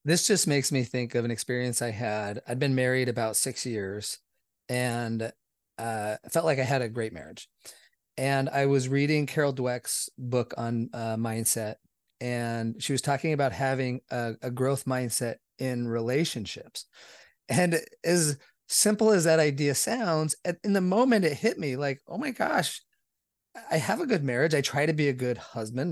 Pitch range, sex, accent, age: 125-155 Hz, male, American, 30-49